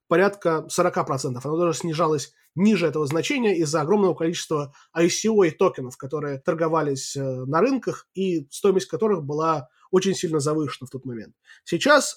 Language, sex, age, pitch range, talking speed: Russian, male, 20-39, 155-205 Hz, 145 wpm